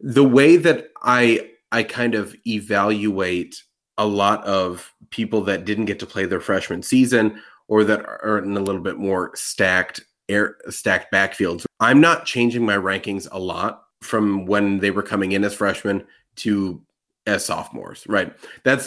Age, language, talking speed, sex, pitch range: 30-49, English, 165 wpm, male, 100-120 Hz